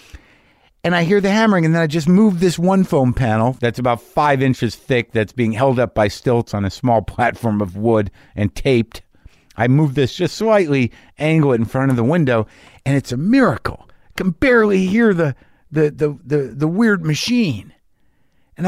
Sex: male